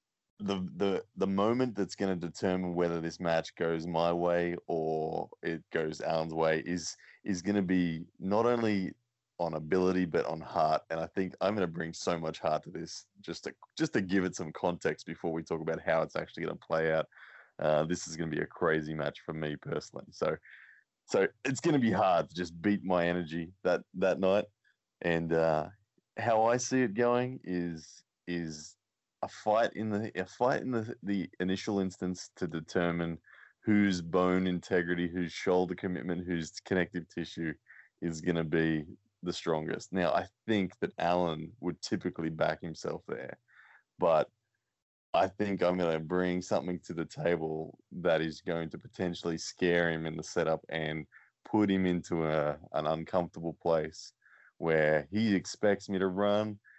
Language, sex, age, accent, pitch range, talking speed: English, male, 20-39, Australian, 80-95 Hz, 180 wpm